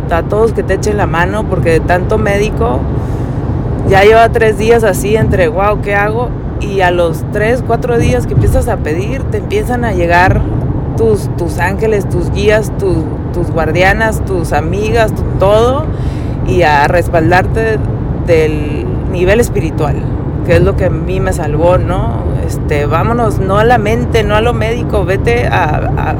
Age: 30-49